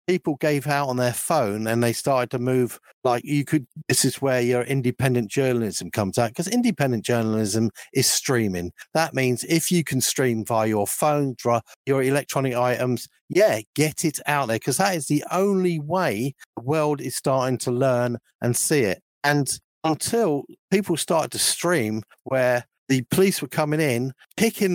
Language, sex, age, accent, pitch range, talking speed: English, male, 50-69, British, 125-160 Hz, 175 wpm